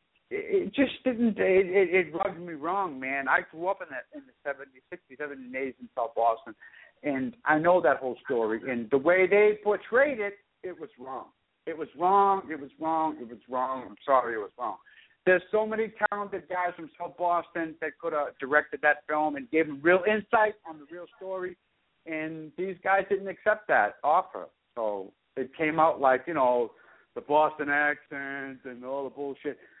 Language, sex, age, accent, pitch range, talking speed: English, male, 60-79, American, 140-190 Hz, 195 wpm